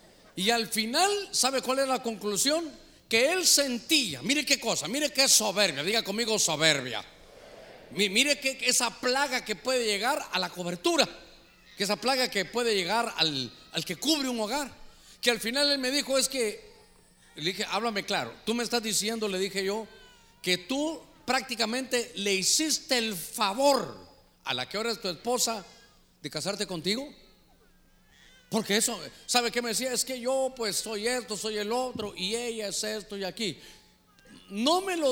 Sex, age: male, 50-69